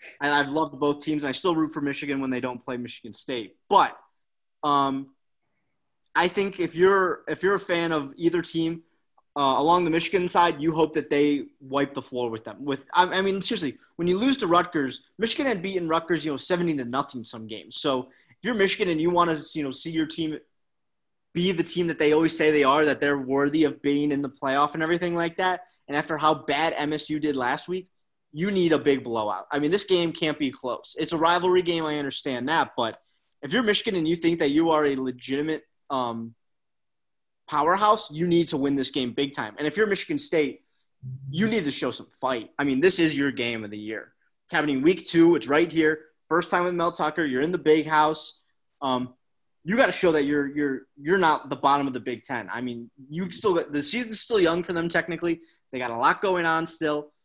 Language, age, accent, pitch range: English, 20-39, American, 140-170 Hz